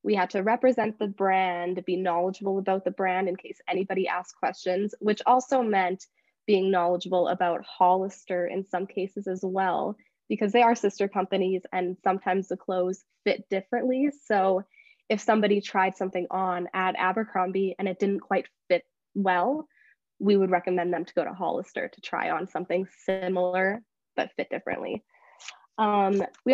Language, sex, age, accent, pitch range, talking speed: English, female, 20-39, American, 185-220 Hz, 160 wpm